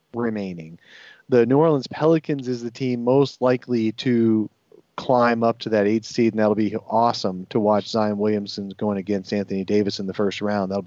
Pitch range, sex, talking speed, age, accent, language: 115-140 Hz, male, 190 wpm, 30-49, American, English